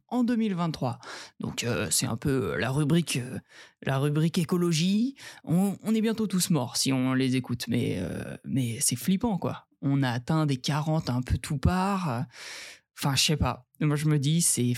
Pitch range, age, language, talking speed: 140-195 Hz, 20-39, French, 190 wpm